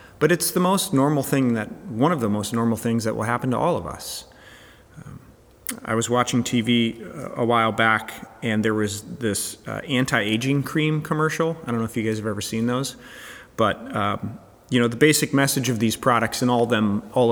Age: 30-49